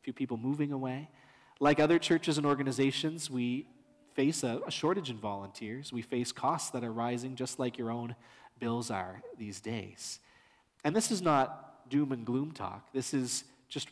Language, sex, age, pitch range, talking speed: English, male, 30-49, 115-145 Hz, 175 wpm